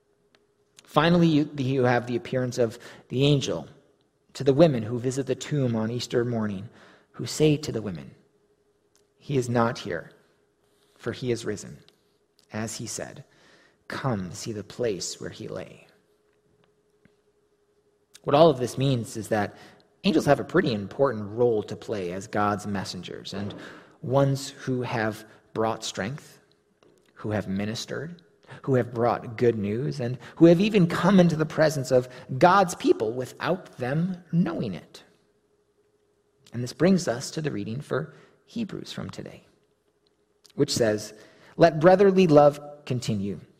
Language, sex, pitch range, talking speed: English, male, 115-160 Hz, 145 wpm